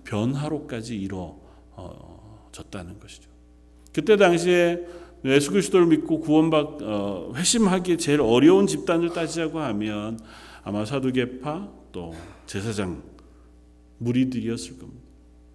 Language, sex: Korean, male